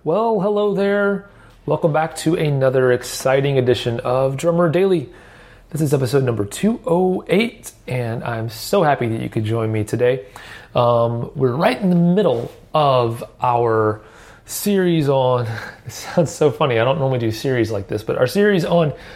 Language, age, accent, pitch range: English, 30-49, American, 115-150 Hz